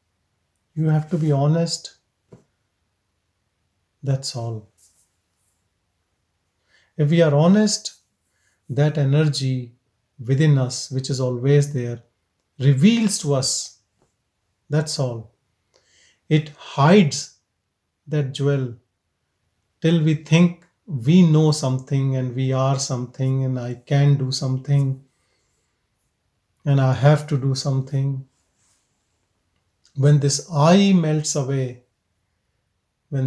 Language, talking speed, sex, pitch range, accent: English, 100 wpm, male, 110-145 Hz, Indian